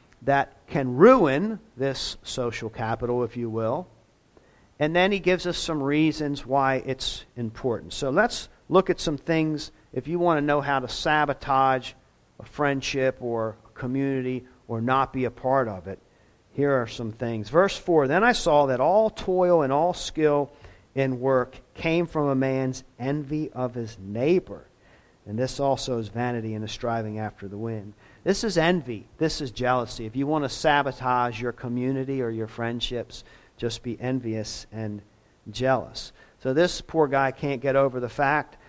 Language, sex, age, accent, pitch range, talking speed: English, male, 50-69, American, 120-175 Hz, 170 wpm